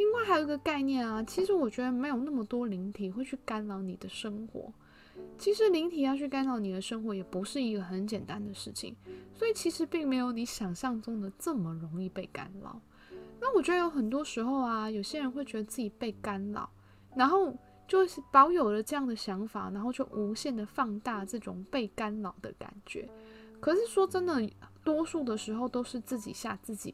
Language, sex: Chinese, female